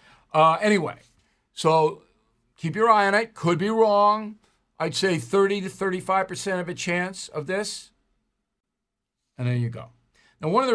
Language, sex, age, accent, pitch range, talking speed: English, male, 60-79, American, 160-210 Hz, 165 wpm